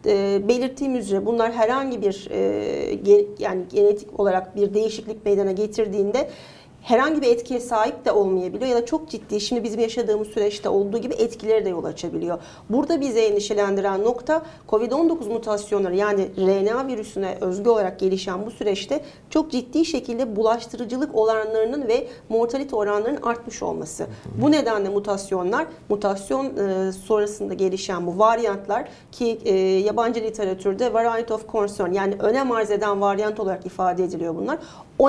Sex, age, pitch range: female, 40-59, 200-245 Hz